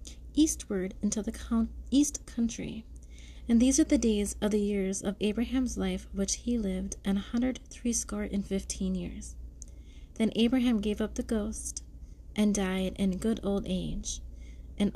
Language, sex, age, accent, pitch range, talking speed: English, female, 30-49, American, 190-235 Hz, 155 wpm